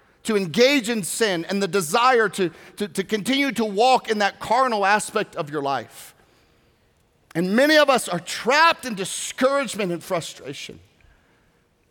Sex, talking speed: male, 150 wpm